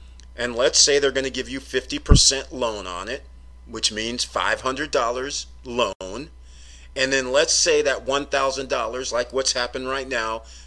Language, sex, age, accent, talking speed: English, male, 40-59, American, 150 wpm